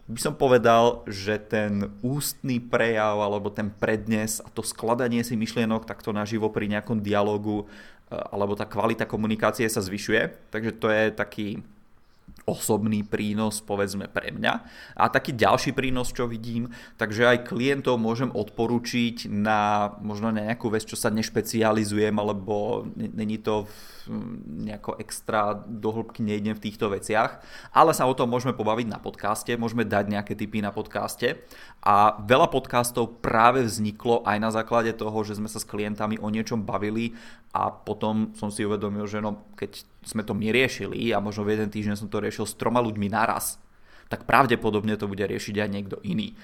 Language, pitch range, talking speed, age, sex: Czech, 105-120 Hz, 165 wpm, 20-39, male